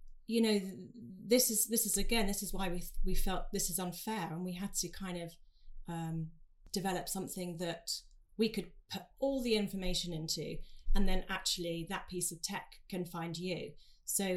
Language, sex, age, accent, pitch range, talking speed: English, female, 30-49, British, 160-190 Hz, 185 wpm